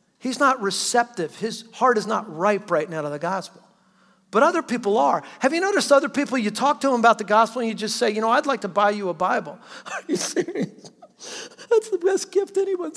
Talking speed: 230 wpm